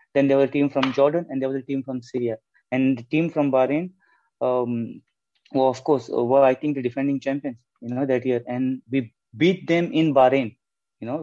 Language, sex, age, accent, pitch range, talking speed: English, male, 30-49, Indian, 120-135 Hz, 225 wpm